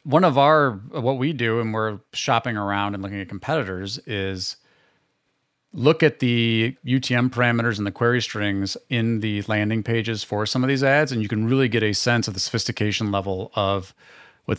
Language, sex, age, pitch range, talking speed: English, male, 40-59, 105-135 Hz, 190 wpm